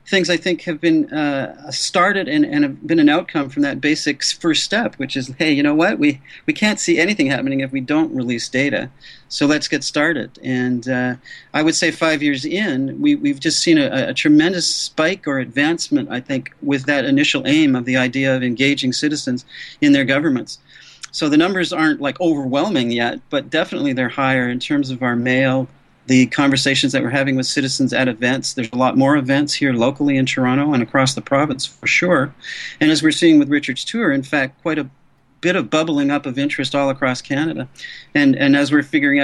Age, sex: 40-59, male